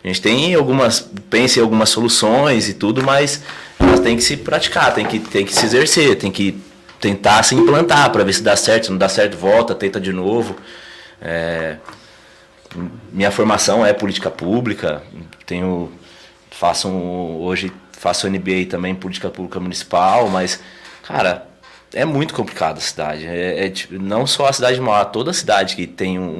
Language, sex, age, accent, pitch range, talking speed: Portuguese, male, 20-39, Brazilian, 85-100 Hz, 165 wpm